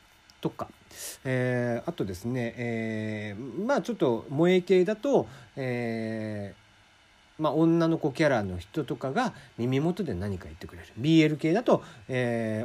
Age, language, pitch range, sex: 40-59, Japanese, 110-180 Hz, male